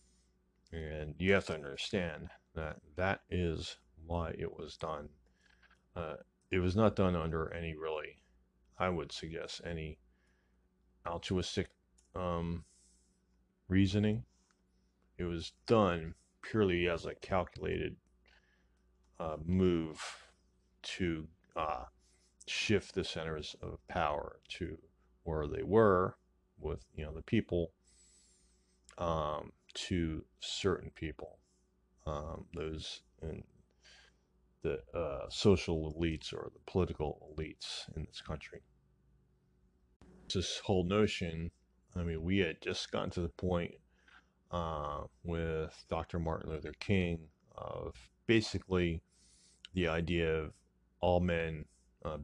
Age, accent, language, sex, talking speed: 30-49, American, English, male, 110 wpm